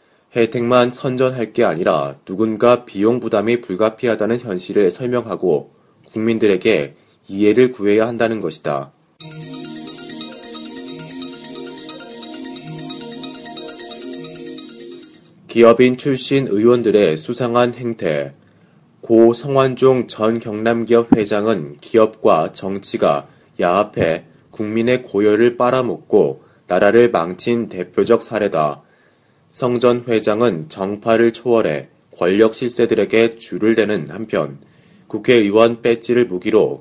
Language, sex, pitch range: Korean, male, 100-120 Hz